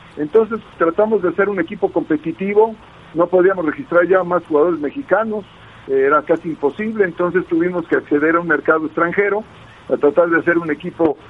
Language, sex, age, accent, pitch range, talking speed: Spanish, male, 50-69, Mexican, 150-200 Hz, 165 wpm